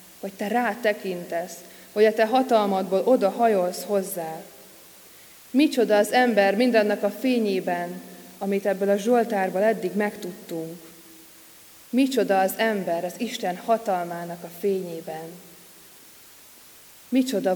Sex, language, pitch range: female, Hungarian, 175-210 Hz